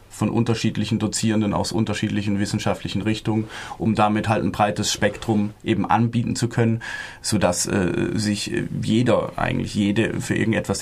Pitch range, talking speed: 105-120 Hz, 140 wpm